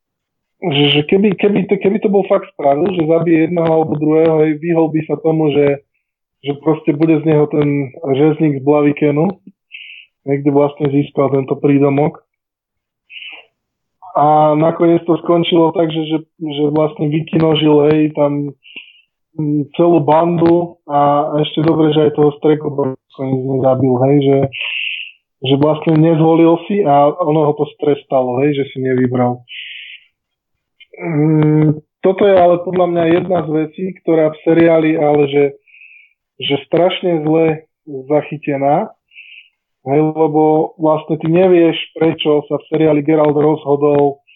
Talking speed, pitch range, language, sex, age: 135 wpm, 145-160 Hz, Slovak, male, 20-39